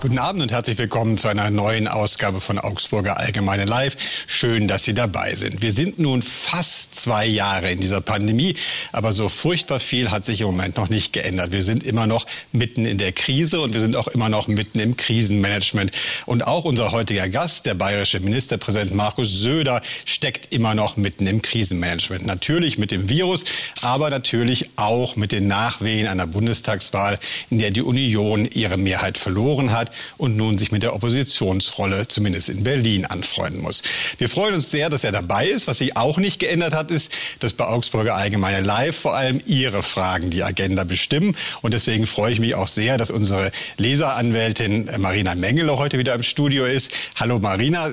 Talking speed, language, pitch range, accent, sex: 185 wpm, German, 100-130 Hz, German, male